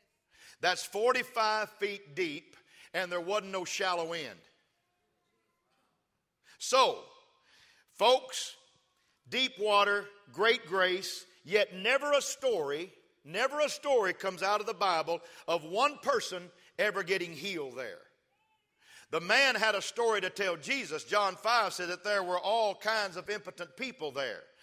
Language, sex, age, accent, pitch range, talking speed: English, male, 50-69, American, 185-235 Hz, 135 wpm